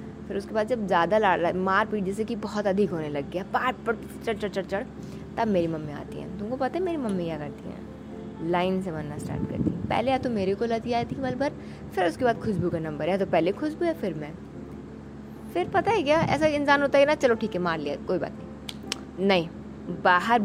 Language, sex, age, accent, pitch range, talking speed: Hindi, female, 20-39, native, 175-235 Hz, 235 wpm